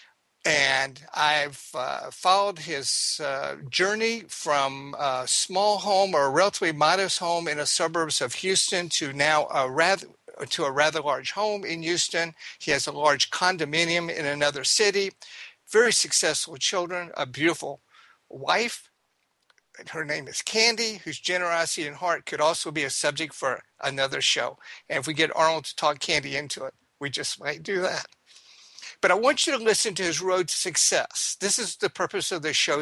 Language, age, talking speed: English, 50-69, 175 wpm